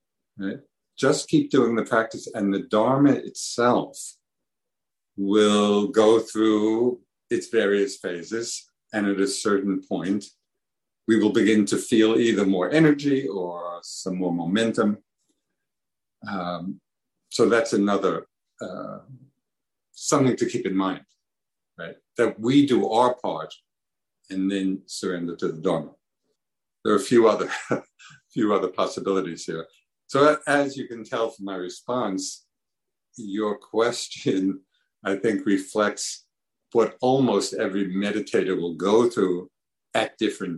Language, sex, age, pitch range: English, male, 50-69, 95-120 Hz